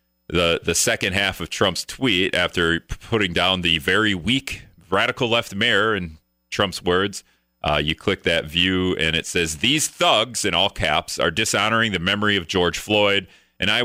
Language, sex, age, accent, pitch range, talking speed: English, male, 40-59, American, 75-100 Hz, 180 wpm